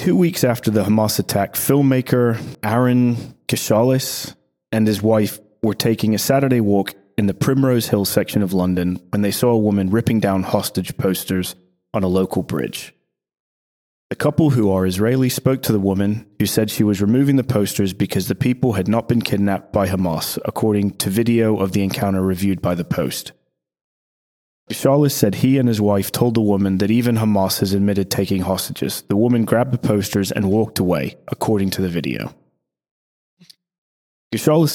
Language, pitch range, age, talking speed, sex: English, 95-120 Hz, 30-49, 175 wpm, male